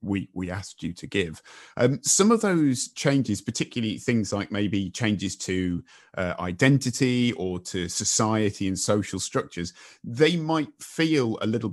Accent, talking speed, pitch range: British, 155 wpm, 95-120 Hz